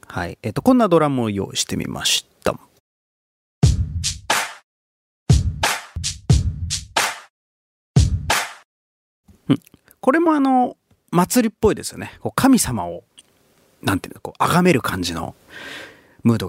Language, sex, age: Japanese, male, 30-49